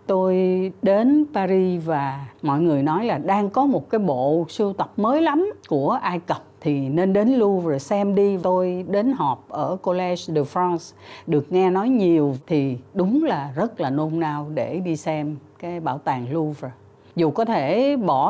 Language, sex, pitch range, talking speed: Vietnamese, female, 155-220 Hz, 180 wpm